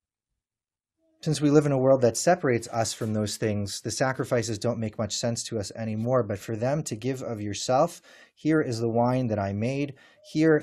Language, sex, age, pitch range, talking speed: English, male, 30-49, 110-155 Hz, 205 wpm